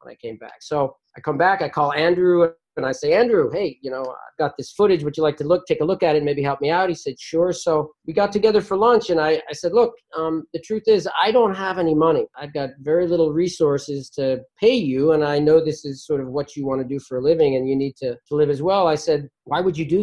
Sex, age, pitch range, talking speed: male, 40-59, 135-165 Hz, 290 wpm